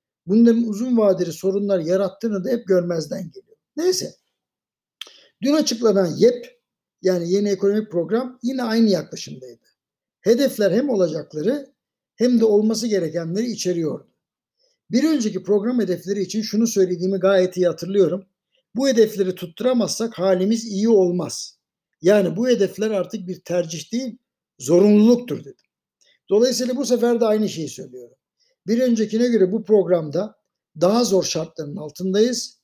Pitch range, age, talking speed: 180-235 Hz, 60-79, 125 wpm